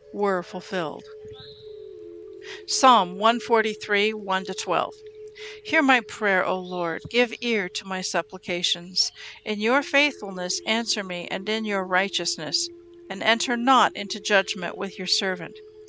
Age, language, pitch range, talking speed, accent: 50-69, English, 190-250 Hz, 130 wpm, American